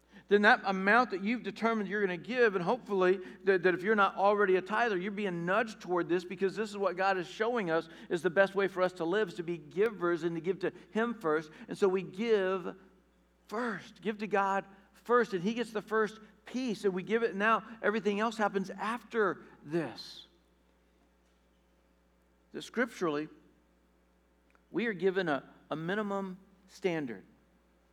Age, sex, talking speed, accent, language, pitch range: 60-79, male, 185 wpm, American, English, 135-200 Hz